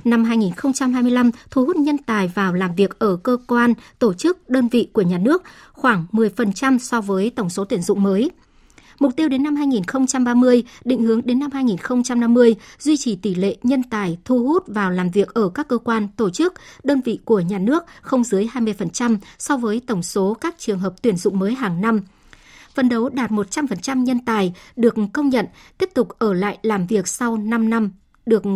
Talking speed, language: 200 wpm, Vietnamese